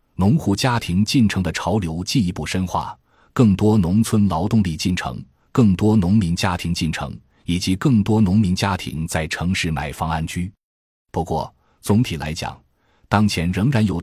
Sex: male